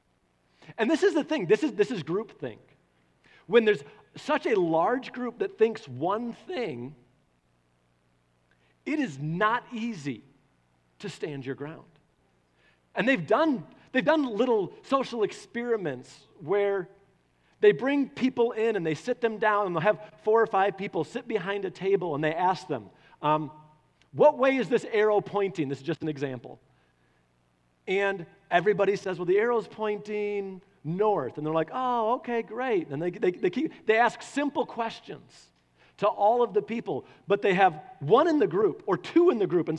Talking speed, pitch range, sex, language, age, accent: 165 wpm, 150-235 Hz, male, English, 40-59, American